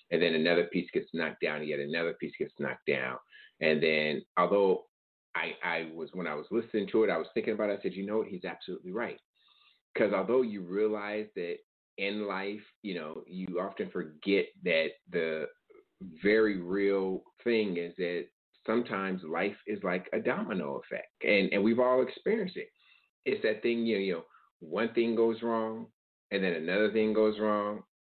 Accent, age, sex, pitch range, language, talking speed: American, 30-49, male, 95-125 Hz, English, 190 wpm